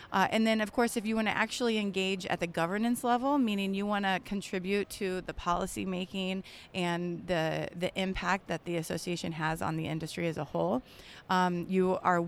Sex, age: female, 30-49